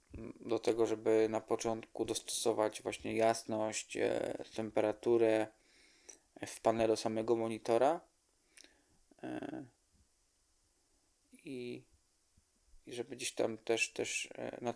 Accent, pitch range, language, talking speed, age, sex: native, 105-115 Hz, Polish, 95 wpm, 20-39, male